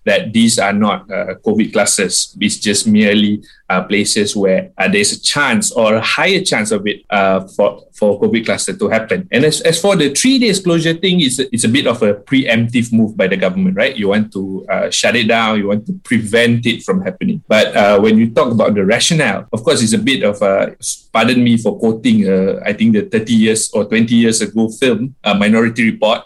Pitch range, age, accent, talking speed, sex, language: 110-175 Hz, 20-39, Malaysian, 225 wpm, male, English